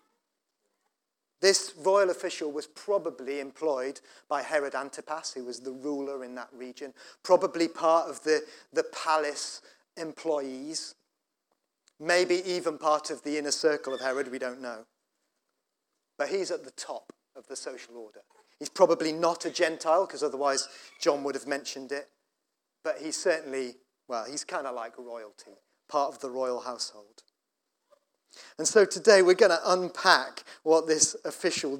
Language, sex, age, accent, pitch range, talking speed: English, male, 40-59, British, 135-175 Hz, 150 wpm